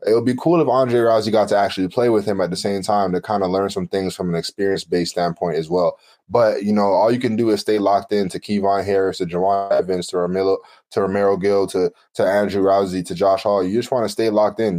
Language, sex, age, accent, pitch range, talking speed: English, male, 20-39, American, 90-105 Hz, 265 wpm